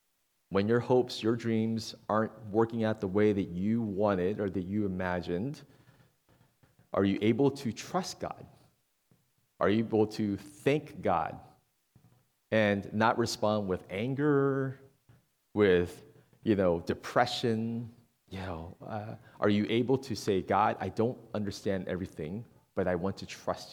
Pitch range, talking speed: 100-135 Hz, 140 wpm